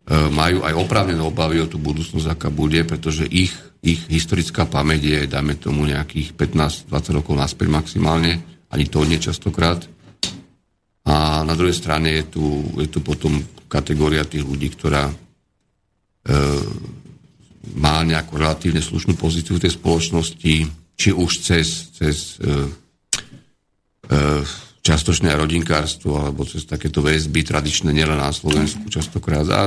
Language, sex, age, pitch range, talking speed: Slovak, male, 50-69, 75-85 Hz, 135 wpm